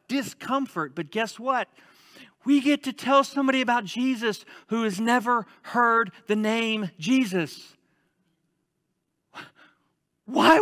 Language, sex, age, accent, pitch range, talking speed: English, male, 40-59, American, 170-270 Hz, 105 wpm